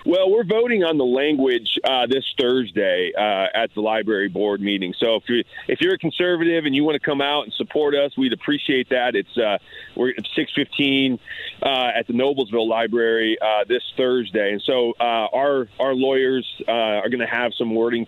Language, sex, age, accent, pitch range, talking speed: English, male, 40-59, American, 120-185 Hz, 215 wpm